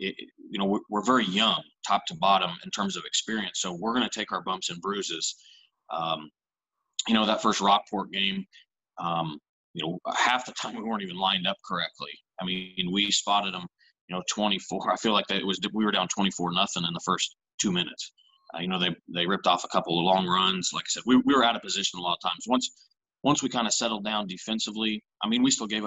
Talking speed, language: 240 wpm, English